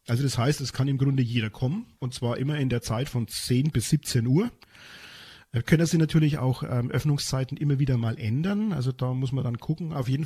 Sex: male